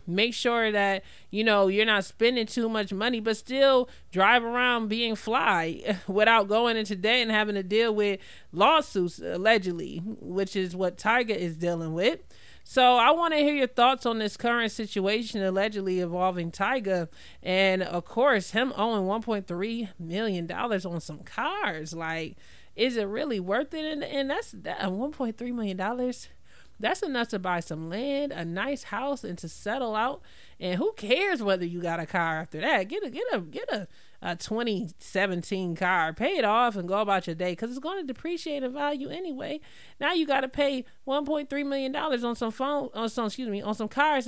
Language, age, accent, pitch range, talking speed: English, 30-49, American, 190-265 Hz, 185 wpm